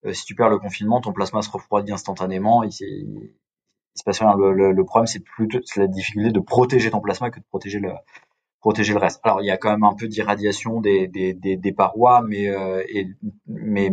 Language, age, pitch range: French, 20-39, 95-110 Hz